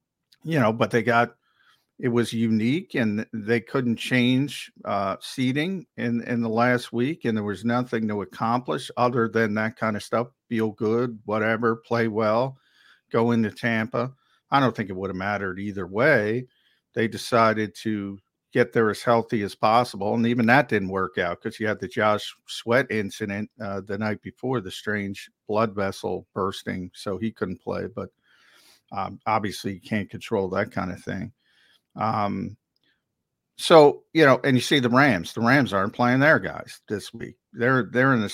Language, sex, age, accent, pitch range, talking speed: English, male, 50-69, American, 105-125 Hz, 180 wpm